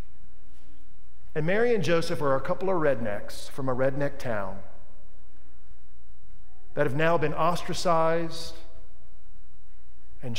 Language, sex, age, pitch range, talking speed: English, male, 50-69, 140-195 Hz, 110 wpm